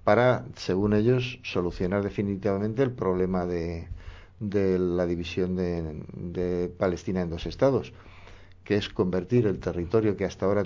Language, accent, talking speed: Spanish, Spanish, 140 wpm